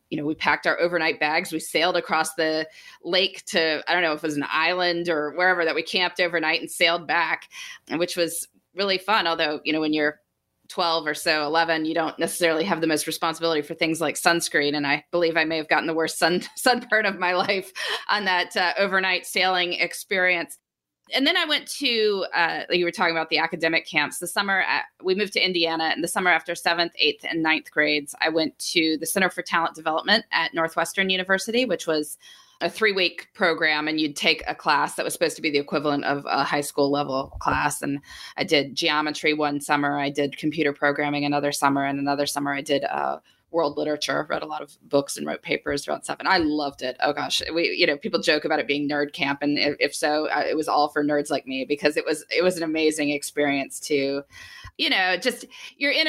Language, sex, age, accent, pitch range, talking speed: English, female, 20-39, American, 150-180 Hz, 225 wpm